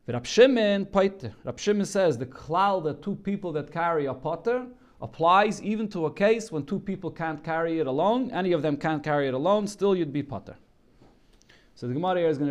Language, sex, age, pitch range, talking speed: English, male, 30-49, 135-170 Hz, 185 wpm